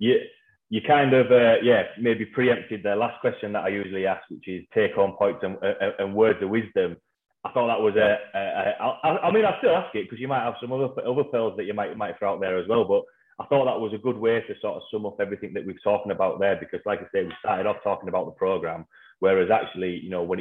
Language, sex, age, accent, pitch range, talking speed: English, male, 30-49, British, 90-130 Hz, 275 wpm